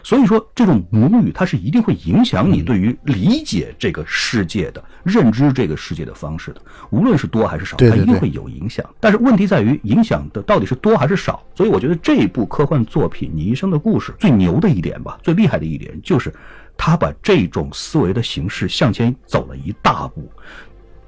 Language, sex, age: Chinese, male, 50-69